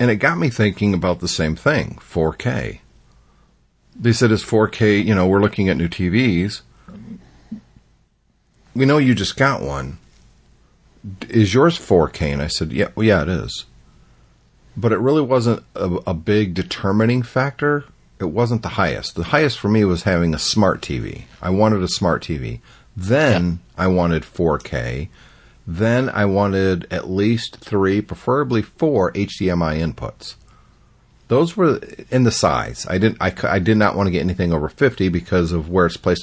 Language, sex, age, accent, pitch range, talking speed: English, male, 50-69, American, 85-115 Hz, 170 wpm